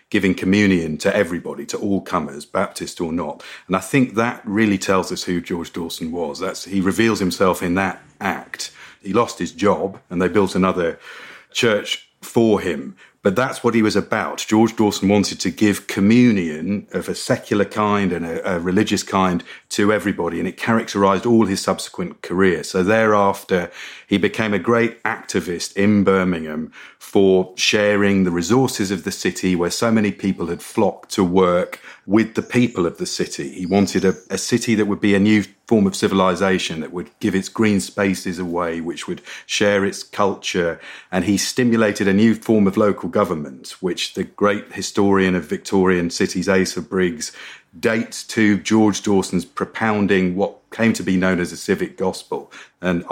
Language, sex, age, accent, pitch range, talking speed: English, male, 40-59, British, 95-110 Hz, 175 wpm